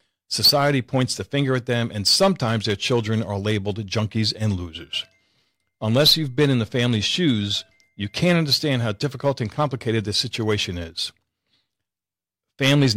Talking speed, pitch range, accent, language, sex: 155 wpm, 100-125 Hz, American, English, male